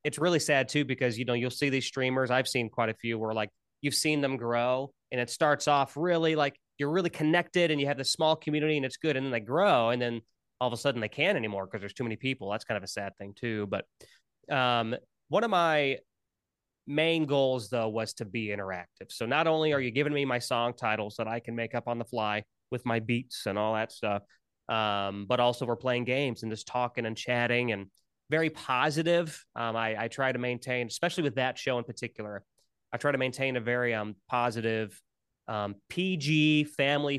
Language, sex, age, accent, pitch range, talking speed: English, male, 30-49, American, 110-140 Hz, 225 wpm